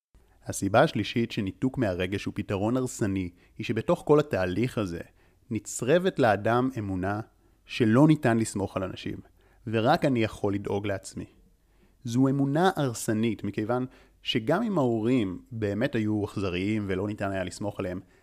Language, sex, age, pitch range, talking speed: Hebrew, male, 30-49, 100-130 Hz, 130 wpm